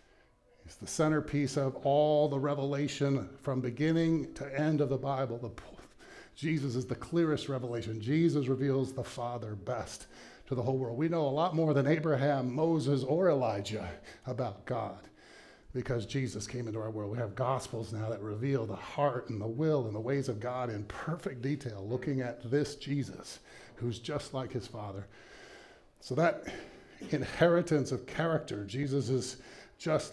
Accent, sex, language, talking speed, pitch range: American, male, English, 160 wpm, 130-160 Hz